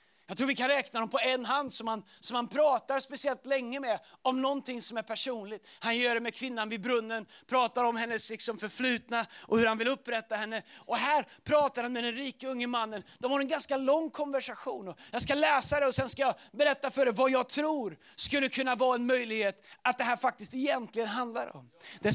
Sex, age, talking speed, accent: male, 30-49, 220 wpm, native